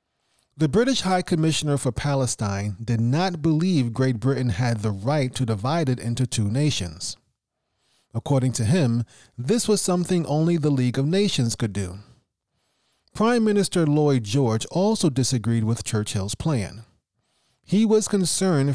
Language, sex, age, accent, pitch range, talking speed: English, male, 40-59, American, 120-165 Hz, 145 wpm